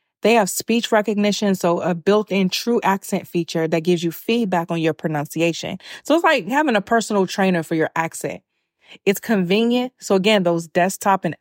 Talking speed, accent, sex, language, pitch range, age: 180 wpm, American, female, English, 170-210 Hz, 30-49